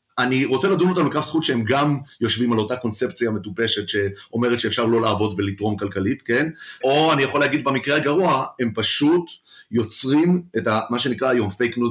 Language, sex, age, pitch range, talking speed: Hebrew, male, 30-49, 110-140 Hz, 180 wpm